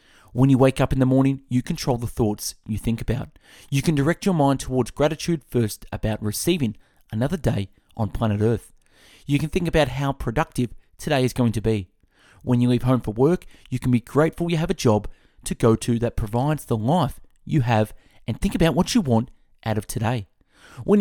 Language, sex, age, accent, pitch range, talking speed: English, male, 30-49, Australian, 110-150 Hz, 210 wpm